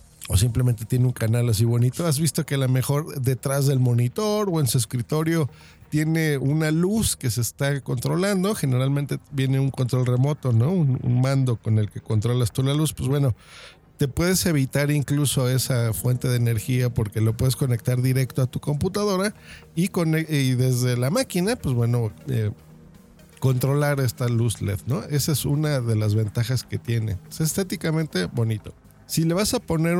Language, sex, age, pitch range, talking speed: Spanish, male, 50-69, 120-155 Hz, 180 wpm